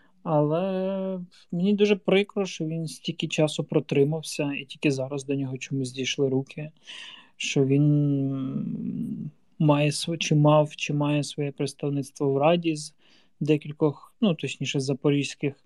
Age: 20-39